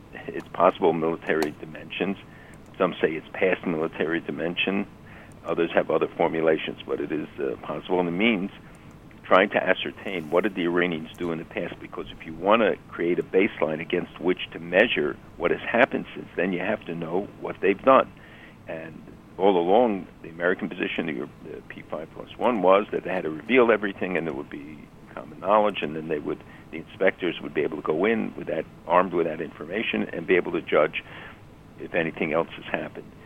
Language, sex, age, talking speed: English, male, 60-79, 195 wpm